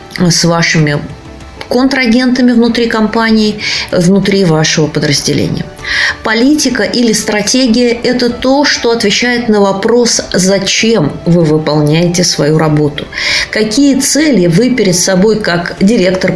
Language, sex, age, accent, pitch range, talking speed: Russian, female, 20-39, native, 160-235 Hz, 105 wpm